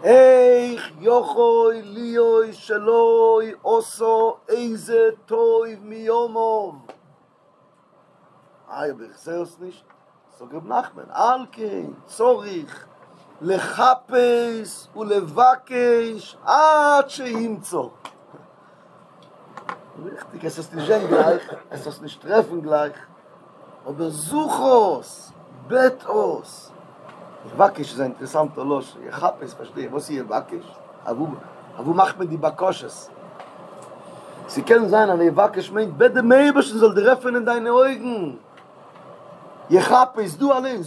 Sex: male